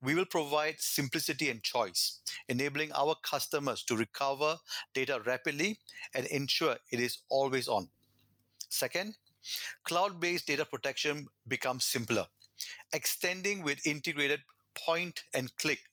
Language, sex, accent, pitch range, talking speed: English, male, Indian, 135-175 Hz, 110 wpm